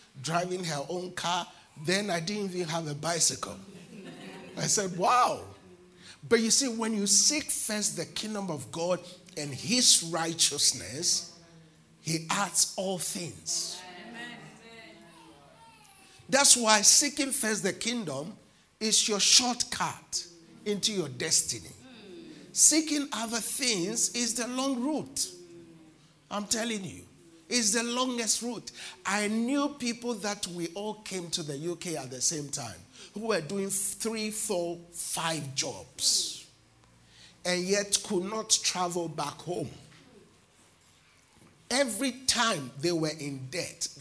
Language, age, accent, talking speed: English, 50-69, Nigerian, 125 wpm